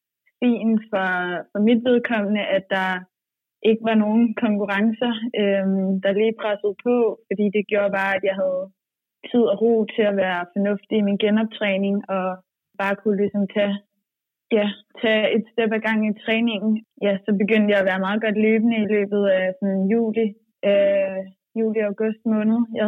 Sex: female